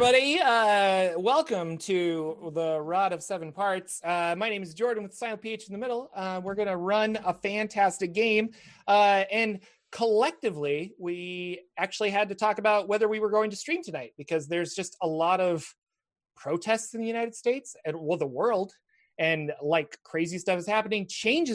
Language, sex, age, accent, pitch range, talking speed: English, male, 30-49, American, 160-215 Hz, 185 wpm